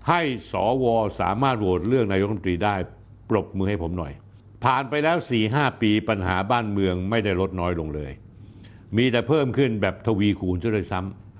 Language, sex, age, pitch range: Thai, male, 60-79, 100-130 Hz